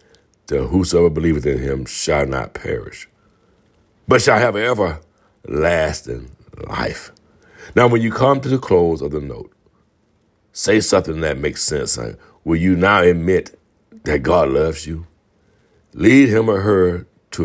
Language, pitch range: English, 75-95 Hz